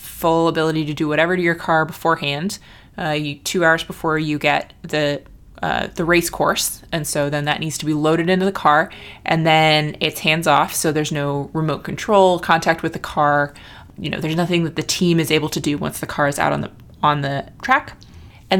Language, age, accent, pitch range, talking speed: English, 20-39, American, 150-180 Hz, 220 wpm